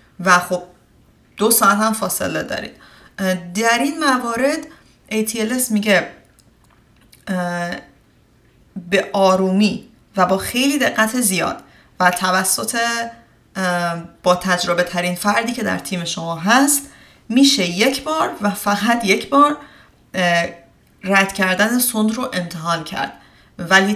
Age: 30-49